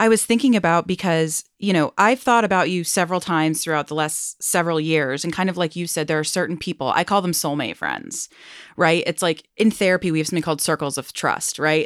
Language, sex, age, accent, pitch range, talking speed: English, female, 30-49, American, 150-175 Hz, 235 wpm